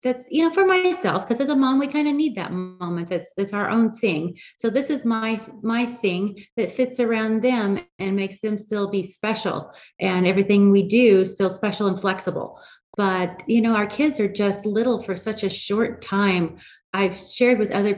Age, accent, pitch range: 30-49, American, 175-220 Hz